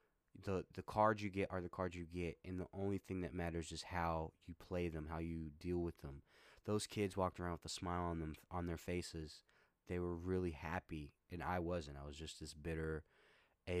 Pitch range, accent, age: 80-90 Hz, American, 20-39